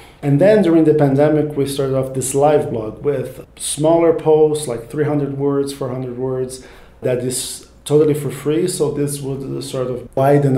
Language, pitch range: English, 130-155 Hz